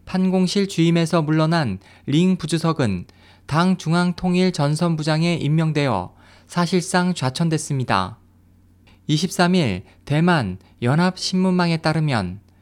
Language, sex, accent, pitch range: Korean, male, native, 110-175 Hz